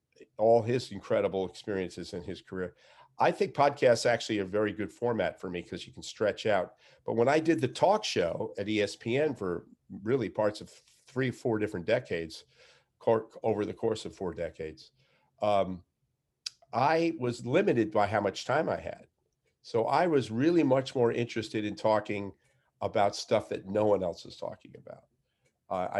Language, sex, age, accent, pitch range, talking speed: English, male, 50-69, American, 95-120 Hz, 170 wpm